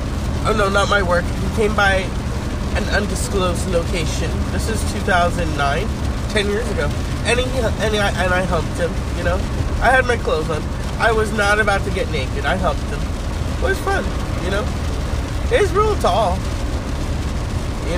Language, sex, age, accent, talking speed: English, male, 20-39, American, 170 wpm